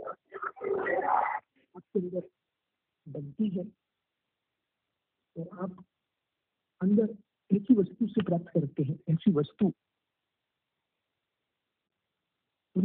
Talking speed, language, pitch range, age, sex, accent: 65 wpm, Hindi, 140-175 Hz, 50-69, male, native